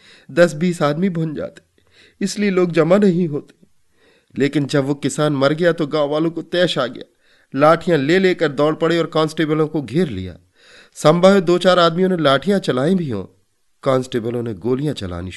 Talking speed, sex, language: 125 wpm, male, Hindi